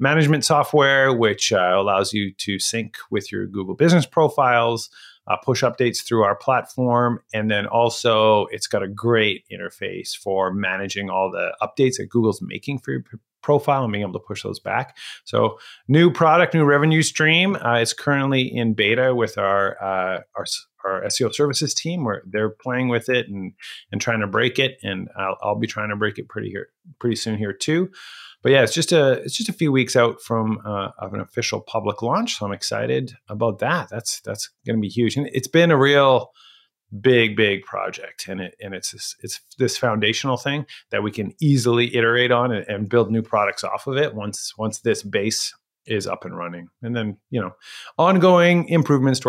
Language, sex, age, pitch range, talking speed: English, male, 30-49, 105-140 Hz, 200 wpm